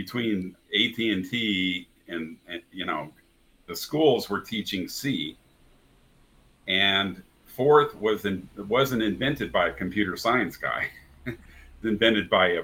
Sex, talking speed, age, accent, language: male, 130 wpm, 50-69, American, English